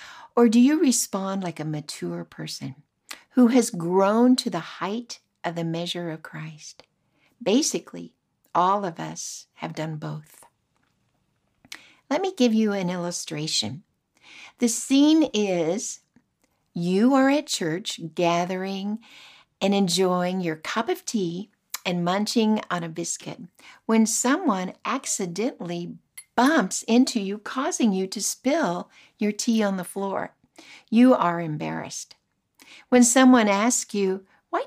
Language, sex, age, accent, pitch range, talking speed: English, female, 60-79, American, 175-240 Hz, 130 wpm